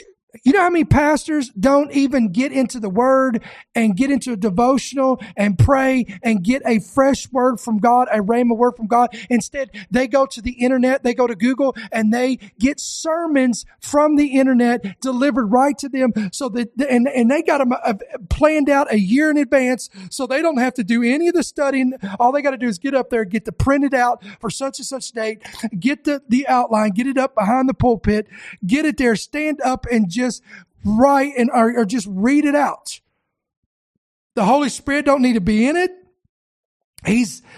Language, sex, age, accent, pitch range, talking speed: English, male, 40-59, American, 235-280 Hz, 210 wpm